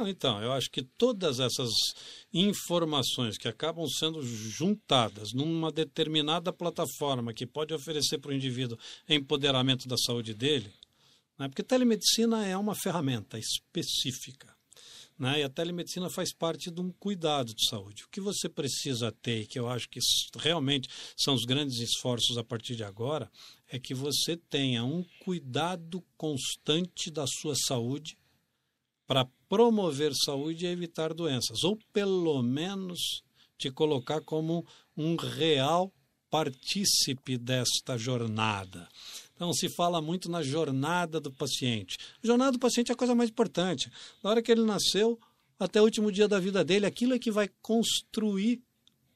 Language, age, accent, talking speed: Portuguese, 60-79, Brazilian, 150 wpm